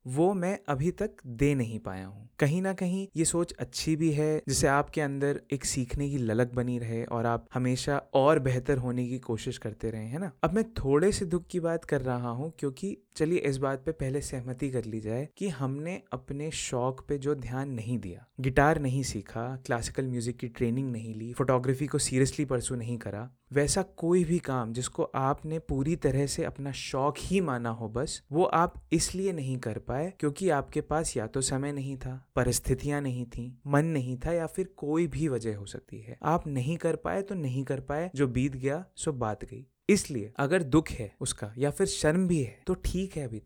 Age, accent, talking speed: 20-39, Indian, 165 wpm